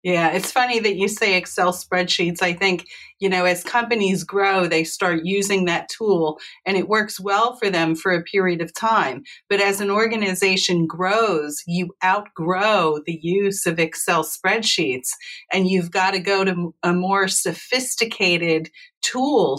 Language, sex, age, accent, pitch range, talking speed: English, female, 40-59, American, 180-220 Hz, 160 wpm